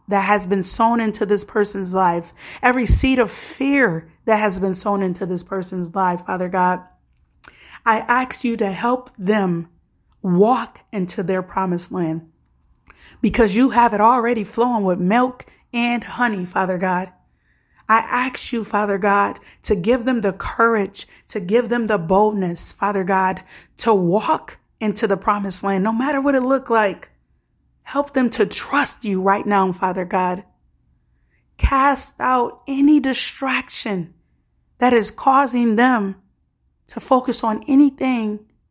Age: 30-49